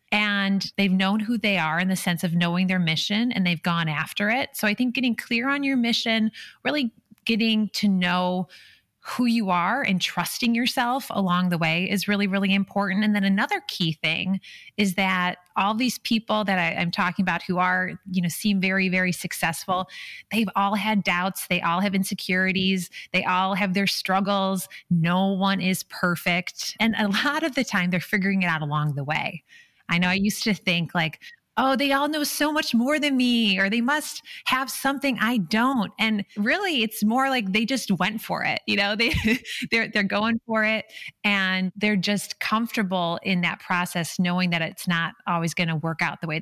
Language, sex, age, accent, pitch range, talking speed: English, female, 30-49, American, 180-225 Hz, 200 wpm